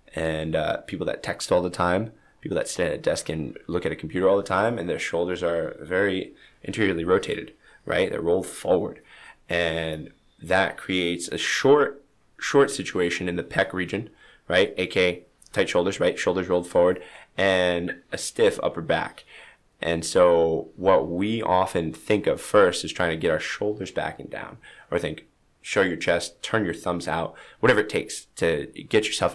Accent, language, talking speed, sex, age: American, English, 180 wpm, male, 20-39